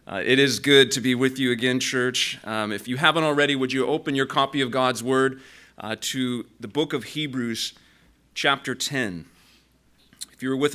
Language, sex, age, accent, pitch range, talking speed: English, male, 30-49, American, 125-150 Hz, 195 wpm